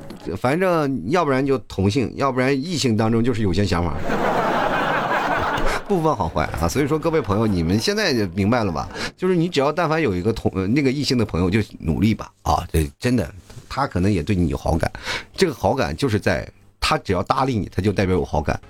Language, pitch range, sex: Chinese, 100-145 Hz, male